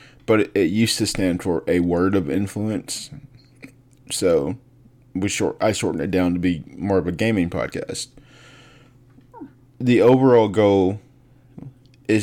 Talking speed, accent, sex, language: 135 wpm, American, male, English